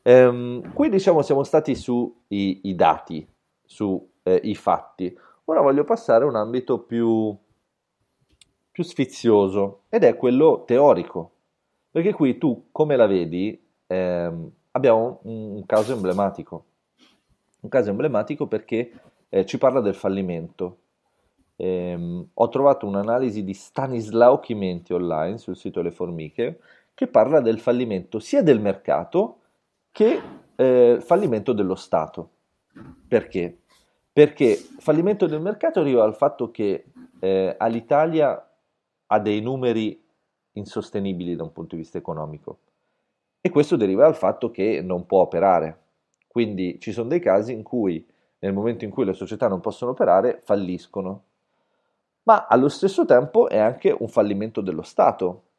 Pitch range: 95-130 Hz